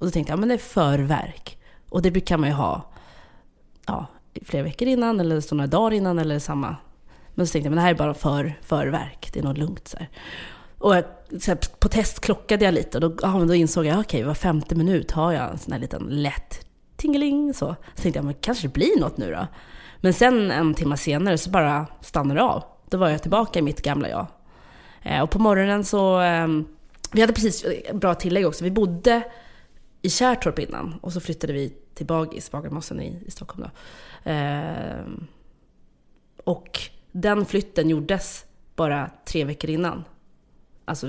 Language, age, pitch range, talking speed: English, 20-39, 150-195 Hz, 195 wpm